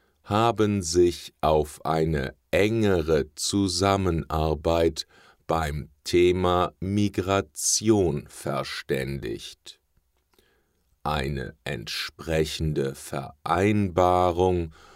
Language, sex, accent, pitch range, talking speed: English, male, German, 75-95 Hz, 50 wpm